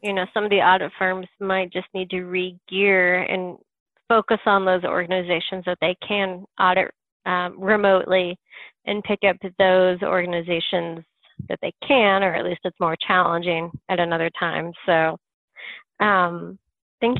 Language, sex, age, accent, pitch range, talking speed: English, female, 30-49, American, 180-205 Hz, 150 wpm